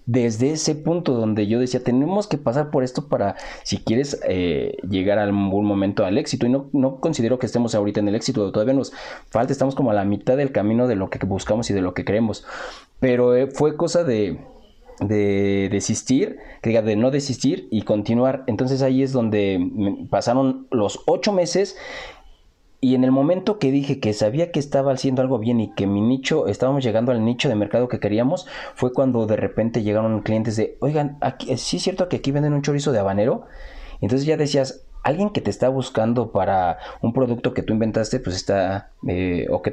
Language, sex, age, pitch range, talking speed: Spanish, male, 30-49, 105-135 Hz, 205 wpm